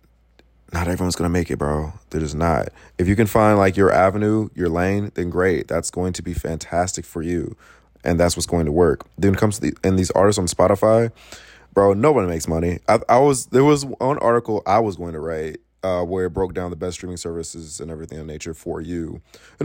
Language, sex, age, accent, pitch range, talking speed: English, male, 20-39, American, 80-95 Hz, 230 wpm